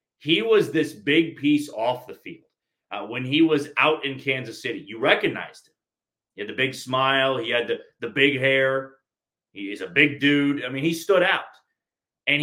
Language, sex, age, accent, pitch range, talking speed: English, male, 30-49, American, 115-150 Hz, 195 wpm